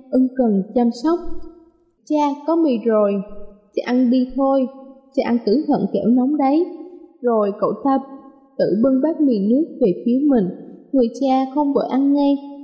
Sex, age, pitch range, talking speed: female, 20-39, 225-285 Hz, 170 wpm